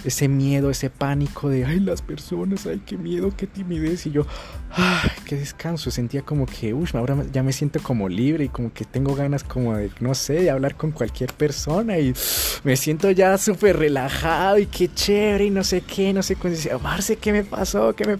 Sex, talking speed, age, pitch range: male, 220 wpm, 30-49, 100-145 Hz